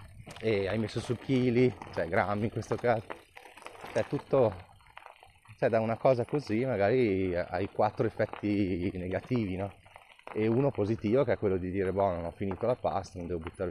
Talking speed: 175 wpm